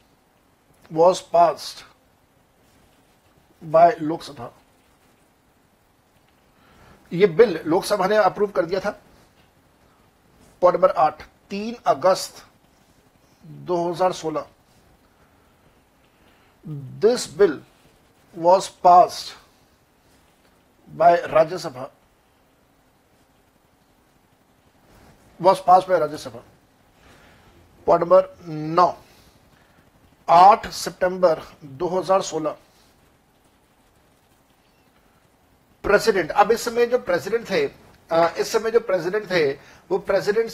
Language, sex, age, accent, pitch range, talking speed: Hindi, male, 60-79, native, 165-205 Hz, 75 wpm